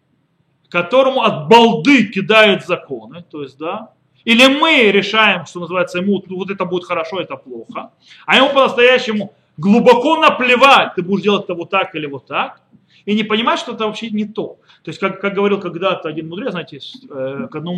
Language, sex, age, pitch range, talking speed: Russian, male, 30-49, 170-230 Hz, 185 wpm